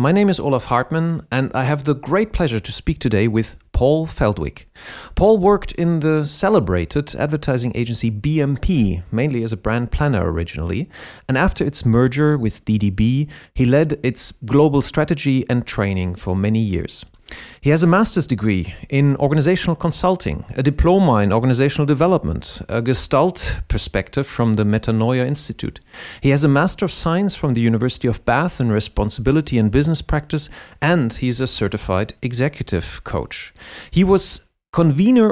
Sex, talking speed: male, 155 wpm